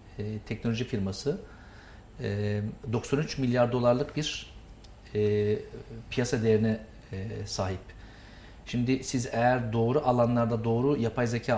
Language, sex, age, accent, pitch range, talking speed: Turkish, male, 50-69, native, 110-130 Hz, 90 wpm